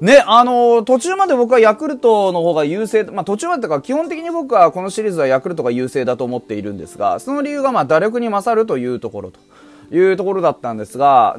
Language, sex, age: Japanese, male, 30-49